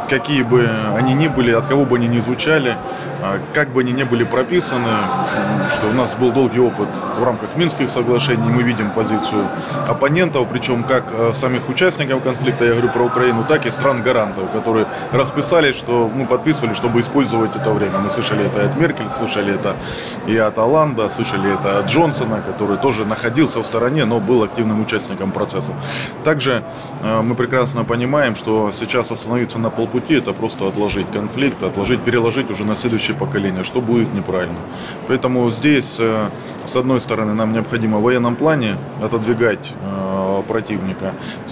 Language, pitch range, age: Russian, 110-130 Hz, 20-39